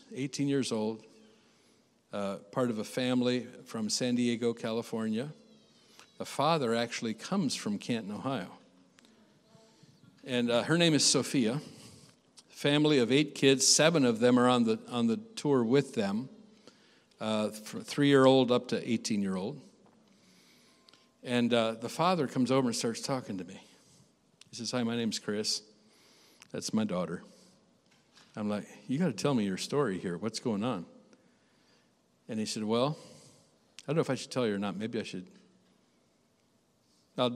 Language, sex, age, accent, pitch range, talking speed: English, male, 50-69, American, 110-140 Hz, 160 wpm